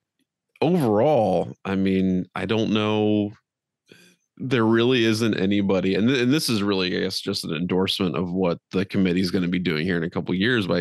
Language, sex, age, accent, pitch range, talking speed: English, male, 30-49, American, 95-115 Hz, 205 wpm